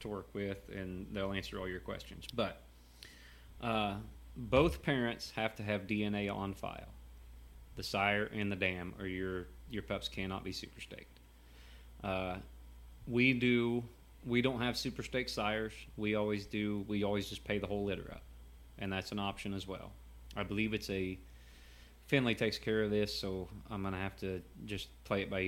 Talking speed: 180 wpm